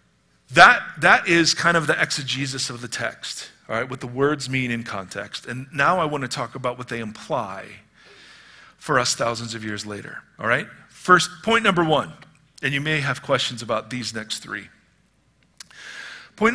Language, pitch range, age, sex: English, 130-190 Hz, 50-69, male